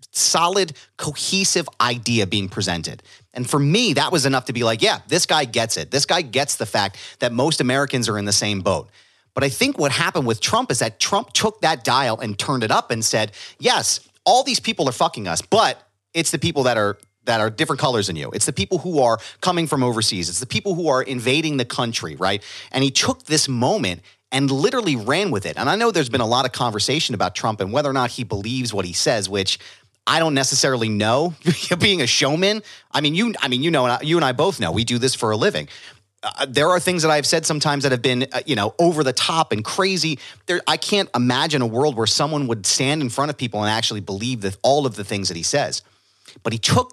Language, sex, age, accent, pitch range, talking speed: English, male, 30-49, American, 110-155 Hz, 245 wpm